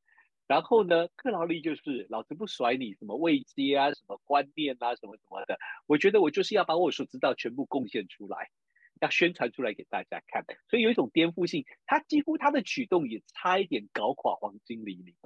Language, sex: Chinese, male